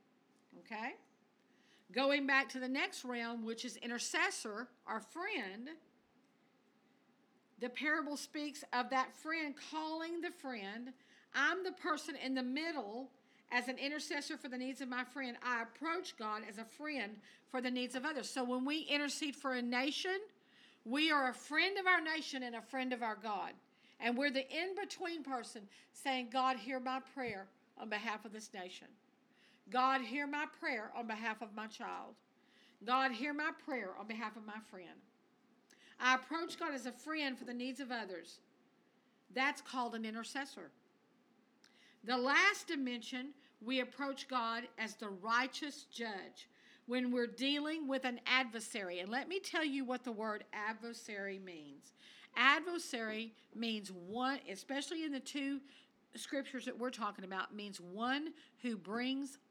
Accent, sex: American, female